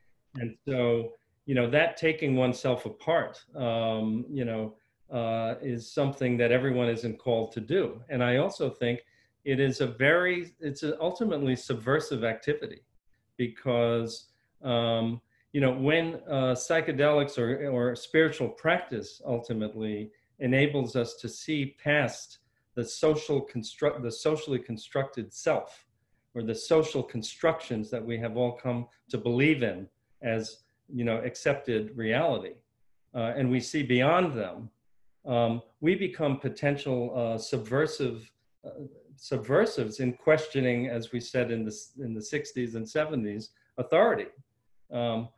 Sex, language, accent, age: male, English, American, 40-59